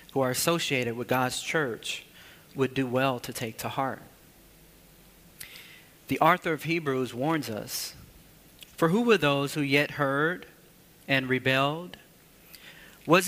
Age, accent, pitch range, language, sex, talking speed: 40-59, American, 130-165 Hz, English, male, 130 wpm